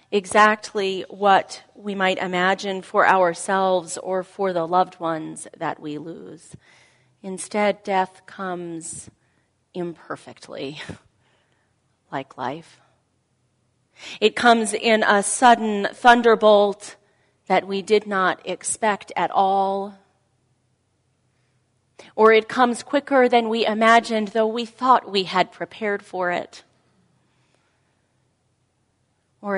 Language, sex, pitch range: English, female, 160-215 Hz